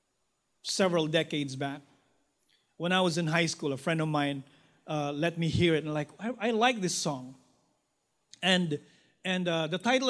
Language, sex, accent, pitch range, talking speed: English, male, Filipino, 175-225 Hz, 180 wpm